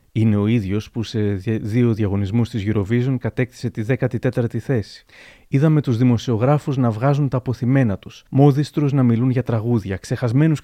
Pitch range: 110-135 Hz